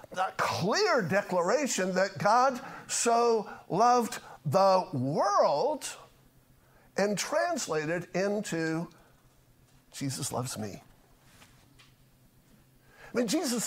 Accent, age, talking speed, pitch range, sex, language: American, 50-69, 80 wpm, 165-235 Hz, male, English